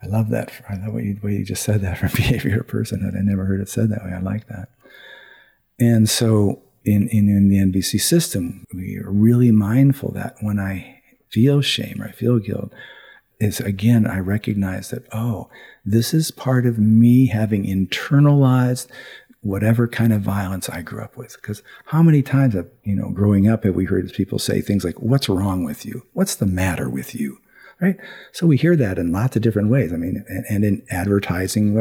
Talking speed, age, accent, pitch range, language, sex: 205 wpm, 50-69, American, 100-120 Hz, English, male